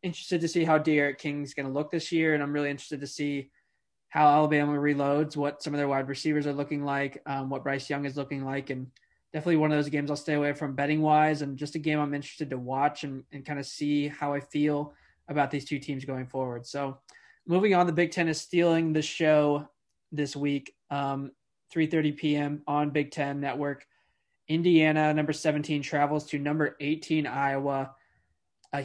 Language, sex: English, male